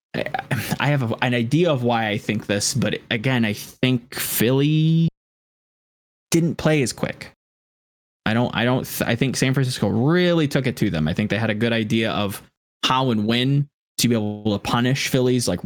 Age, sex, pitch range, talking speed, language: 20-39, male, 105-130 Hz, 190 wpm, English